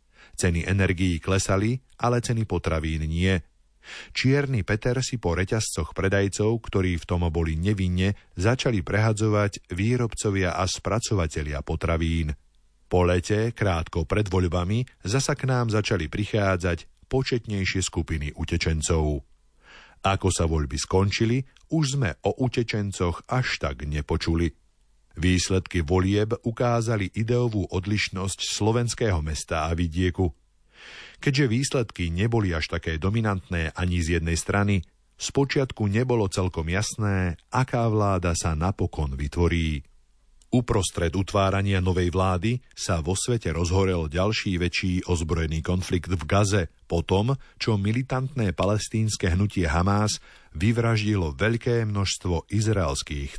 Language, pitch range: Slovak, 85-110 Hz